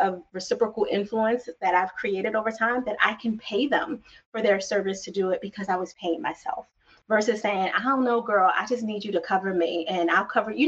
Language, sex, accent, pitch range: English, female, American, 185-235 Hz